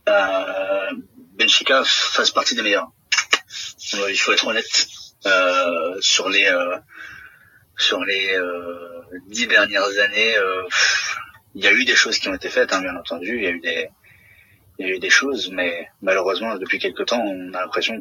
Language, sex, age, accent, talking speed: French, male, 30-49, French, 170 wpm